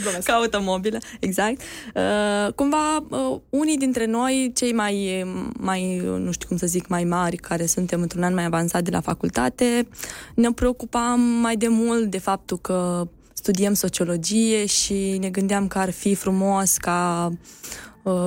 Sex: female